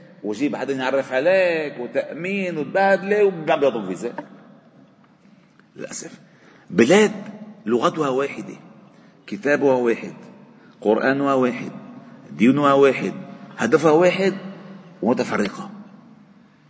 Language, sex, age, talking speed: Arabic, male, 40-59, 80 wpm